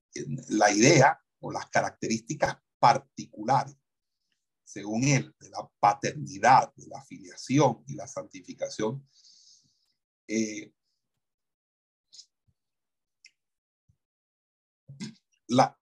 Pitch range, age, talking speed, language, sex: 115-140 Hz, 60-79, 70 wpm, Spanish, male